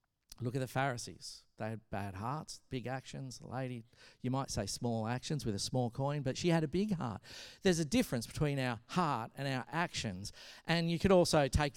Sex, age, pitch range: male, 50-69, 120-170 Hz